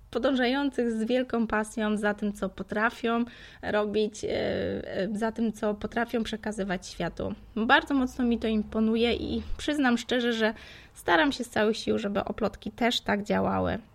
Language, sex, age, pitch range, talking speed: Polish, female, 20-39, 205-245 Hz, 145 wpm